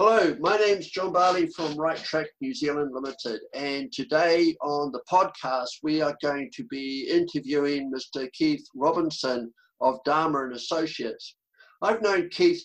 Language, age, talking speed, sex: English, 50-69, 155 wpm, male